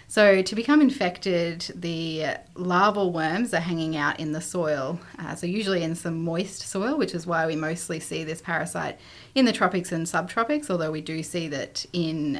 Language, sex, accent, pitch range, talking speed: English, female, Australian, 155-190 Hz, 190 wpm